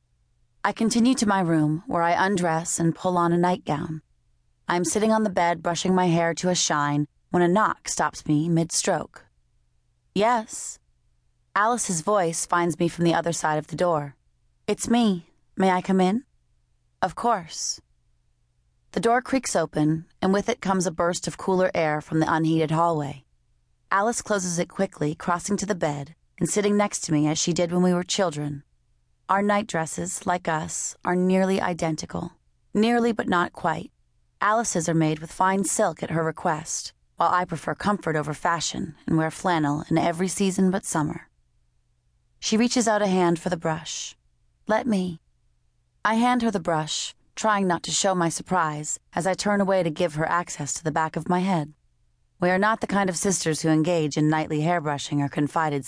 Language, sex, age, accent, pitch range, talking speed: English, female, 30-49, American, 155-195 Hz, 185 wpm